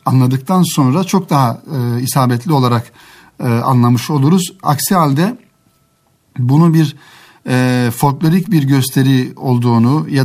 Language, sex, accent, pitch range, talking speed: Turkish, male, native, 120-150 Hz, 115 wpm